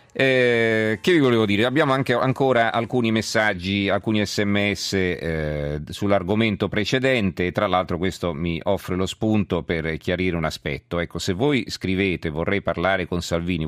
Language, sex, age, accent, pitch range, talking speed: Italian, male, 40-59, native, 85-105 Hz, 155 wpm